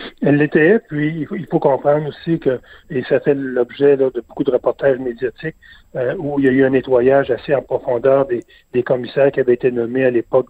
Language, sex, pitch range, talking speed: French, male, 130-155 Hz, 215 wpm